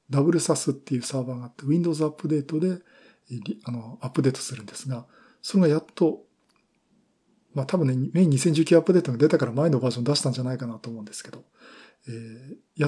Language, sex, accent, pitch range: Japanese, male, native, 130-185 Hz